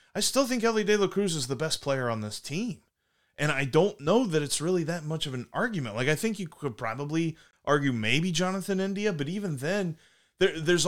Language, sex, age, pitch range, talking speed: English, male, 30-49, 135-185 Hz, 220 wpm